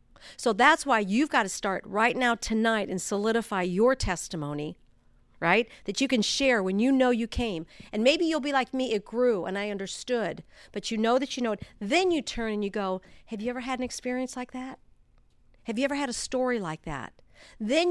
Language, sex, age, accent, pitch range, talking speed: English, female, 50-69, American, 200-270 Hz, 220 wpm